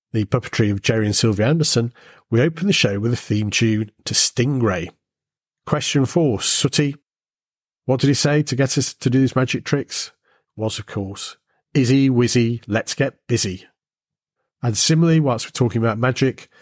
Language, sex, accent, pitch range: English, male, British, 105-135 Hz